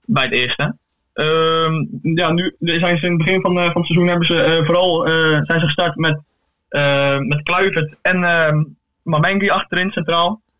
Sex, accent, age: male, Dutch, 20-39